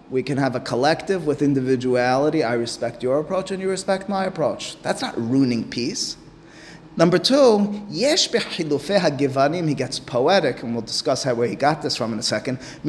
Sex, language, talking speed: male, English, 155 wpm